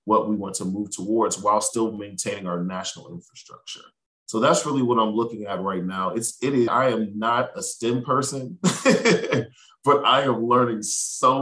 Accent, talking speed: American, 185 wpm